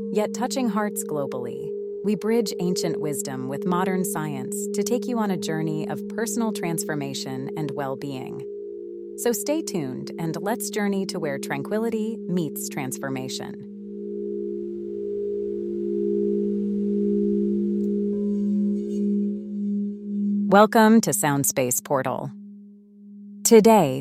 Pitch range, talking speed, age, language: 135-205 Hz, 95 wpm, 30-49, English